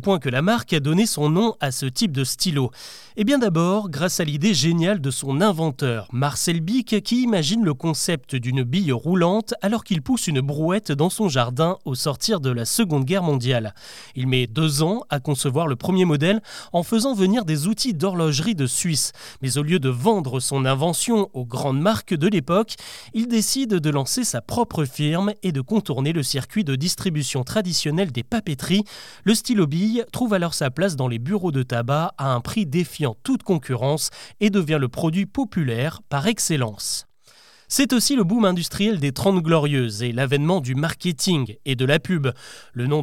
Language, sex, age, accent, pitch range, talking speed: French, male, 30-49, French, 140-205 Hz, 190 wpm